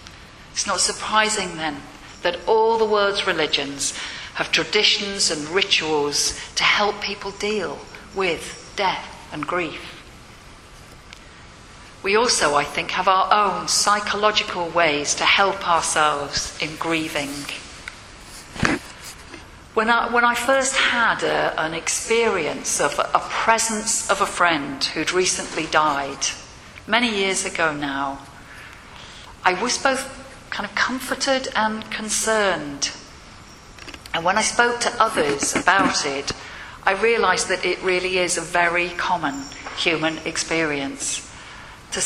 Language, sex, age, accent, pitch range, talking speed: English, female, 40-59, British, 150-215 Hz, 120 wpm